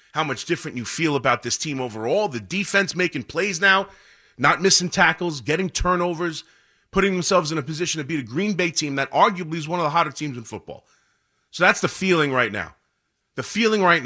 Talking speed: 210 wpm